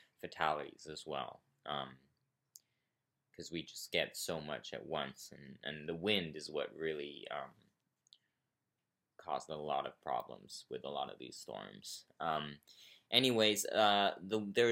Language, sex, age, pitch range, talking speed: English, male, 20-39, 80-110 Hz, 145 wpm